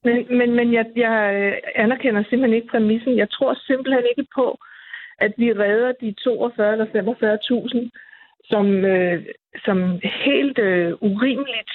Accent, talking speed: native, 135 wpm